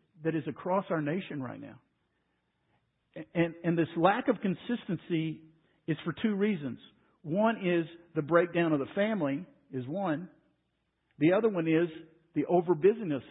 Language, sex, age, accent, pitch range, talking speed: English, male, 50-69, American, 145-185 Hz, 150 wpm